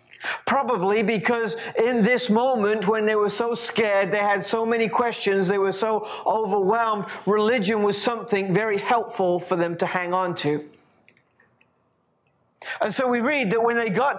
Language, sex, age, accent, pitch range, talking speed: English, male, 40-59, British, 185-230 Hz, 160 wpm